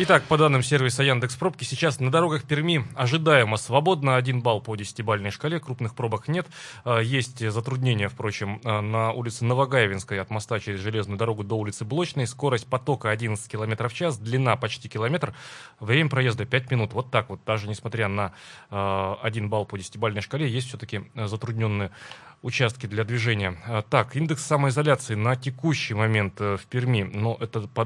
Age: 20-39